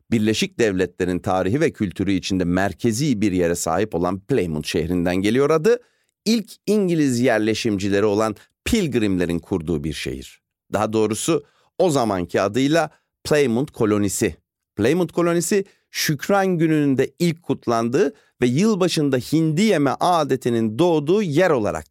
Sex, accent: male, native